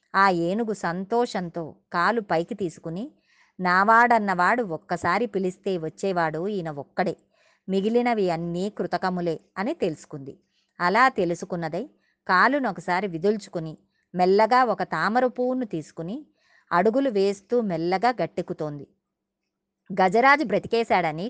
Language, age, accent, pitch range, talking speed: Telugu, 20-39, native, 170-215 Hz, 90 wpm